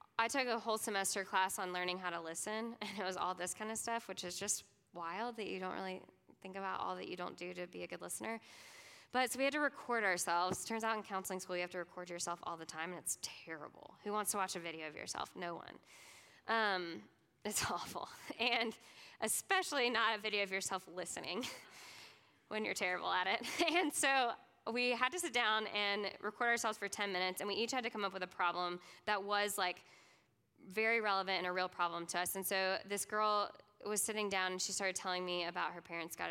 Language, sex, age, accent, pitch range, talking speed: English, female, 10-29, American, 180-225 Hz, 230 wpm